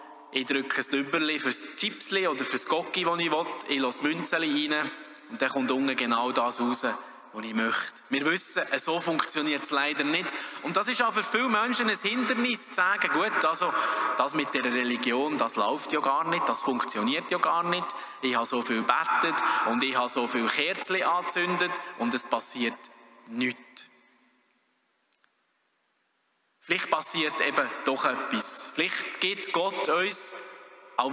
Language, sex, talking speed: German, male, 170 wpm